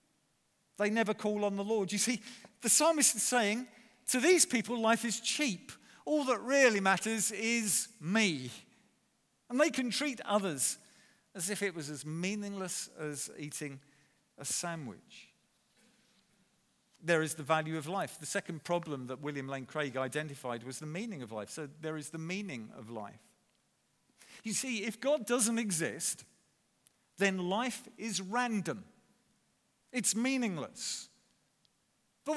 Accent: British